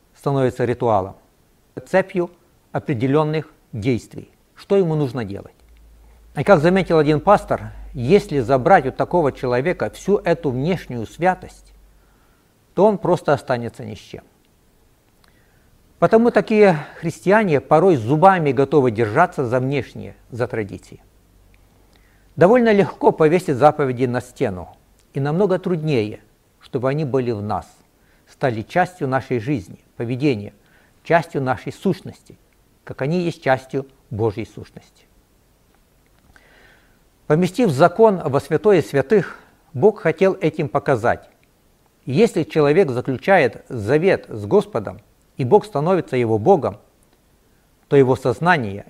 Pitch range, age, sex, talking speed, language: 120-170 Hz, 60-79, male, 115 wpm, Russian